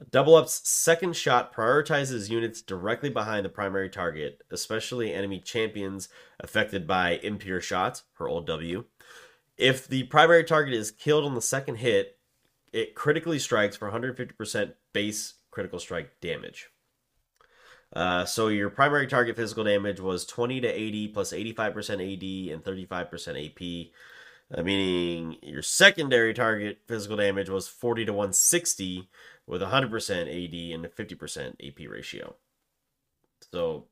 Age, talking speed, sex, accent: 30-49, 140 wpm, male, American